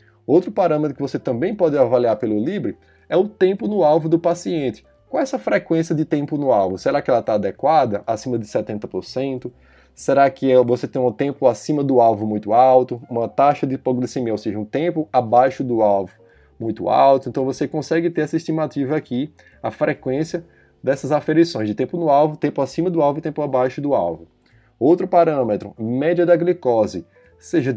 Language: Portuguese